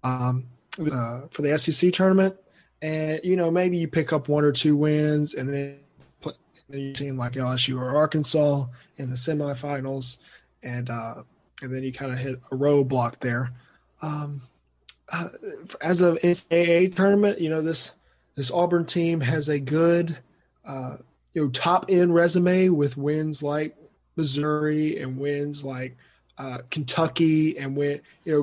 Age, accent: 20-39, American